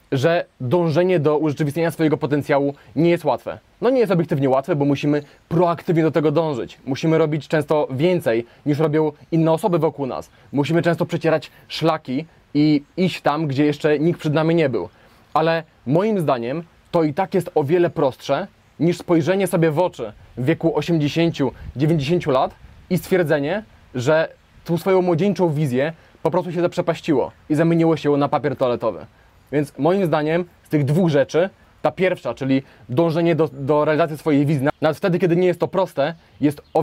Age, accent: 20-39, native